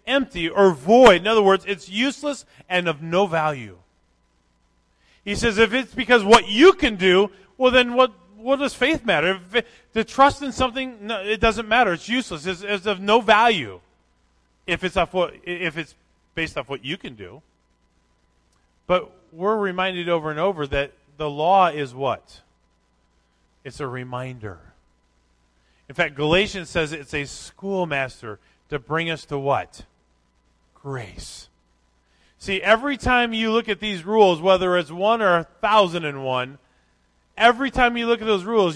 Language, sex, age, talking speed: English, male, 30-49, 165 wpm